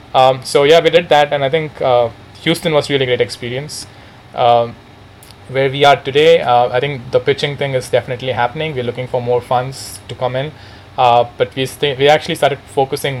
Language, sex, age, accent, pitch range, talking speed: English, male, 20-39, Indian, 115-130 Hz, 210 wpm